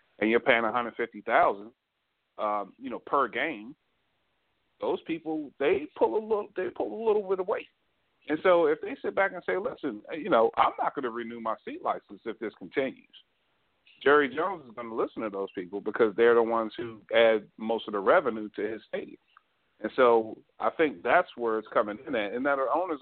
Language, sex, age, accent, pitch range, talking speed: English, male, 40-59, American, 110-140 Hz, 210 wpm